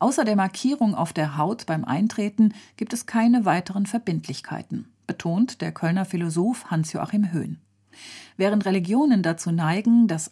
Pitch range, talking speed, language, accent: 165-210 Hz, 140 wpm, German, German